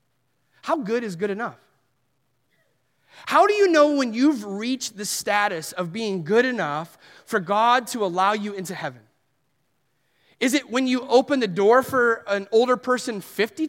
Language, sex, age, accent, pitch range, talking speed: English, male, 30-49, American, 200-285 Hz, 160 wpm